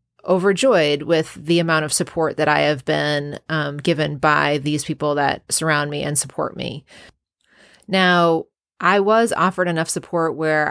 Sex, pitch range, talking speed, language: female, 145-170 Hz, 155 wpm, English